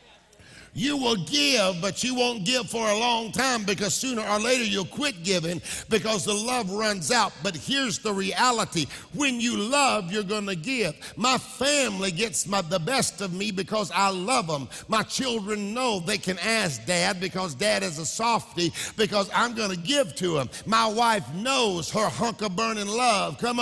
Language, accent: English, American